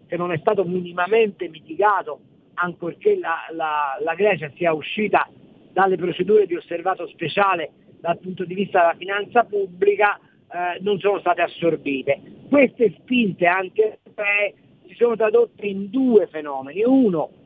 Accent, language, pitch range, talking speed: native, Italian, 170-220 Hz, 140 wpm